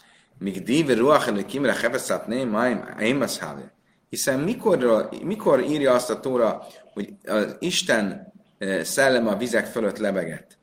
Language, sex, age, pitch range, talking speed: Hungarian, male, 30-49, 110-150 Hz, 95 wpm